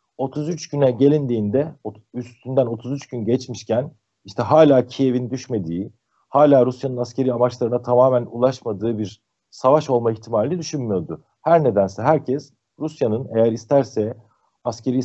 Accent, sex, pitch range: native, male, 115-145 Hz